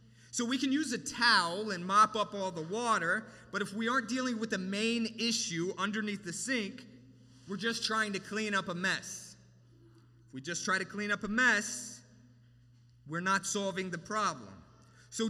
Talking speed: 185 wpm